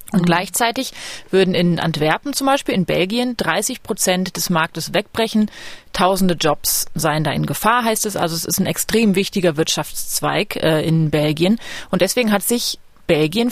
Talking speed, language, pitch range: 165 wpm, German, 175-220 Hz